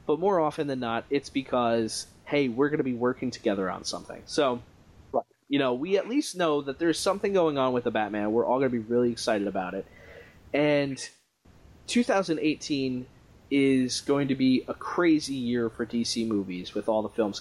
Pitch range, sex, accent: 115-140 Hz, male, American